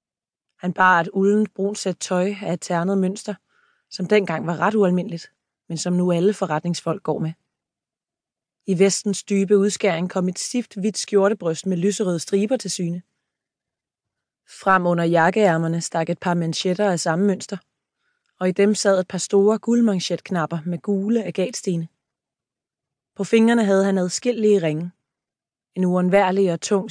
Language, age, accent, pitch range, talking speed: Danish, 20-39, native, 175-205 Hz, 150 wpm